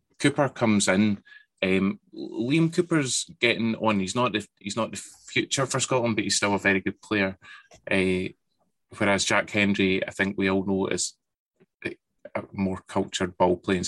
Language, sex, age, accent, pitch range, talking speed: English, male, 20-39, British, 95-115 Hz, 160 wpm